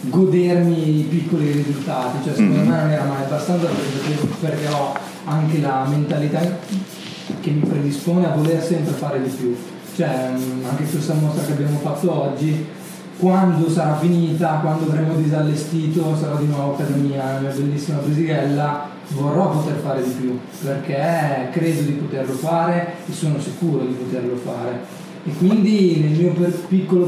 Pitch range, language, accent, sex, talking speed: 145-175 Hz, Italian, native, male, 155 wpm